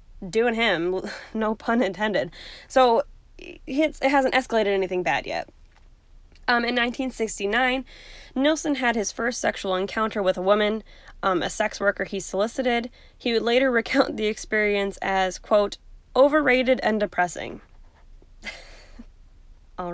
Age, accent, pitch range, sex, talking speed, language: 10-29, American, 190-235 Hz, female, 125 wpm, English